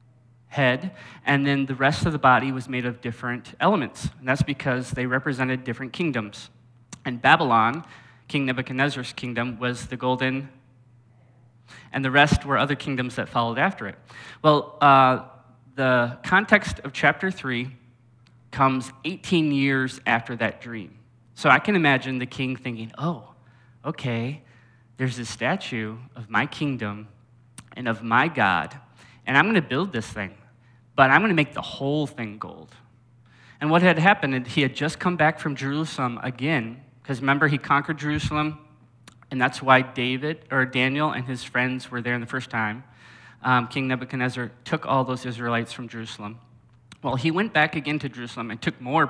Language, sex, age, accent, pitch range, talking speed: English, male, 20-39, American, 120-140 Hz, 165 wpm